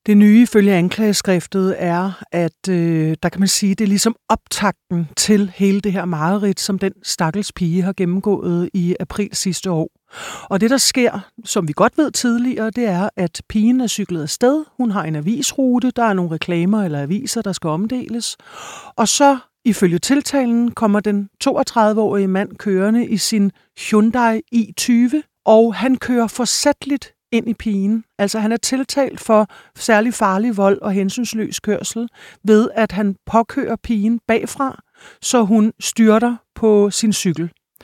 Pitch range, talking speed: 190-235 Hz, 160 wpm